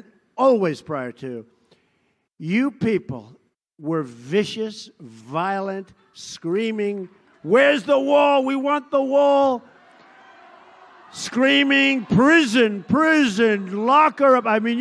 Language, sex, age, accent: English, male, 50-69, American